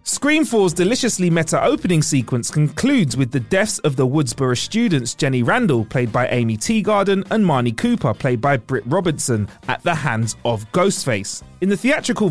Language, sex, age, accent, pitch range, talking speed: English, male, 30-49, British, 125-195 Hz, 165 wpm